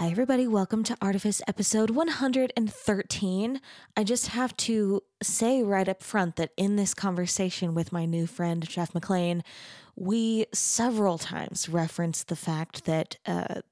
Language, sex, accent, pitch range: English, female, American, 175-235 Hz